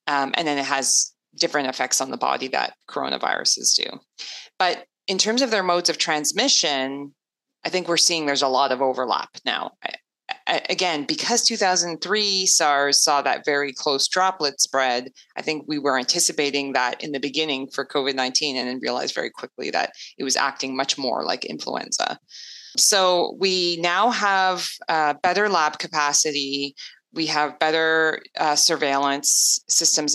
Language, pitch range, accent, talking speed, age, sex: English, 140-180 Hz, American, 155 wpm, 30-49, female